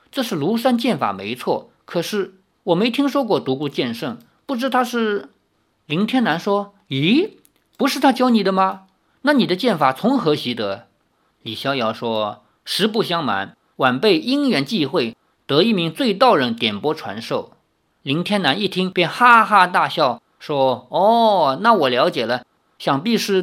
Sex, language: male, Chinese